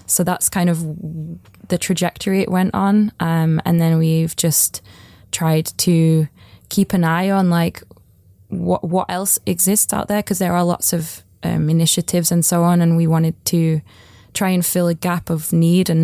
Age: 20-39